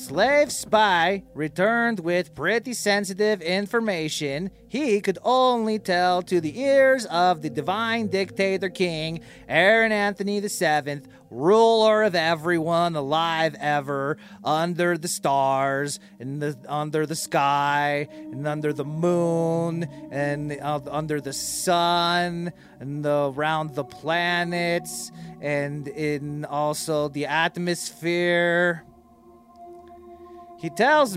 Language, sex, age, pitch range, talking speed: English, male, 30-49, 150-210 Hz, 110 wpm